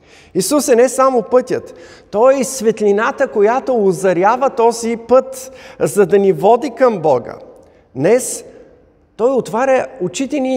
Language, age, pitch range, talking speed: Bulgarian, 50-69, 170-250 Hz, 135 wpm